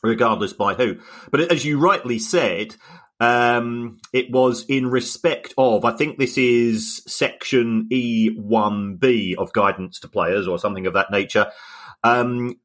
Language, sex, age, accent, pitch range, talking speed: English, male, 40-59, British, 100-120 Hz, 140 wpm